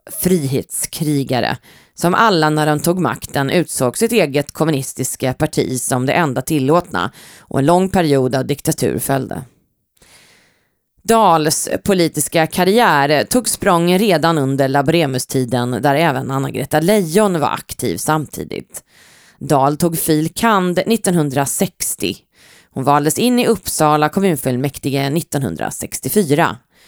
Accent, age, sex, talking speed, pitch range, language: native, 30-49, female, 115 wpm, 135-175 Hz, Swedish